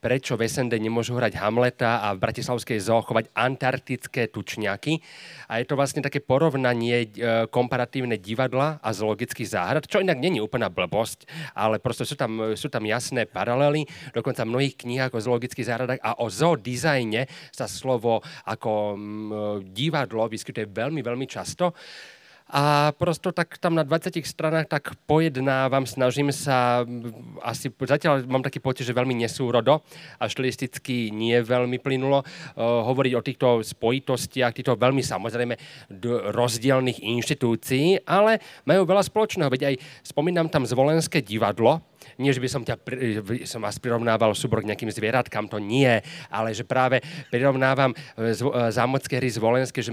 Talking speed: 145 wpm